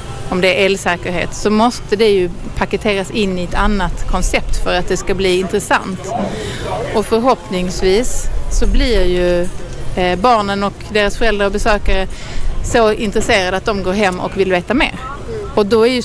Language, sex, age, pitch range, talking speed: English, female, 30-49, 195-250 Hz, 170 wpm